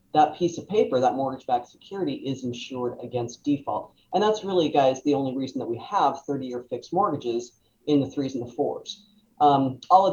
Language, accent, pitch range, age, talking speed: English, American, 125-150 Hz, 40-59, 195 wpm